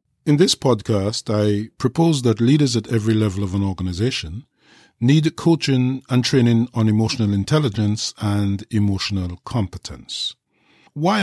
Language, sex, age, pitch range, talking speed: English, male, 50-69, 105-140 Hz, 130 wpm